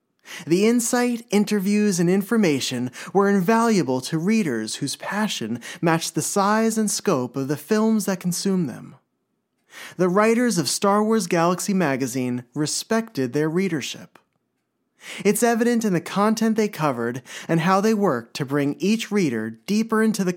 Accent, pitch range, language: American, 155-210 Hz, English